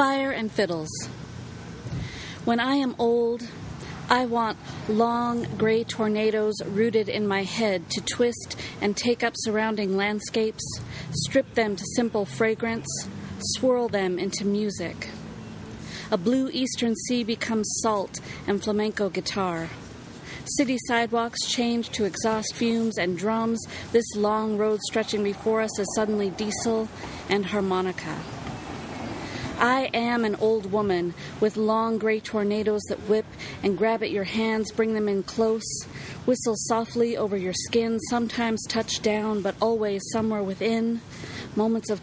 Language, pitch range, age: English, 200-230 Hz, 40-59